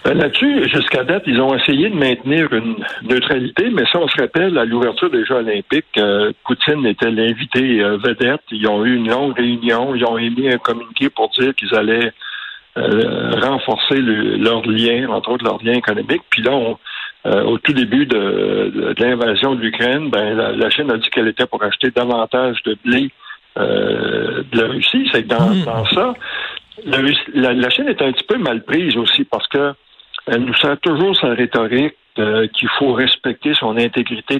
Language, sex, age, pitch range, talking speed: French, male, 60-79, 115-145 Hz, 190 wpm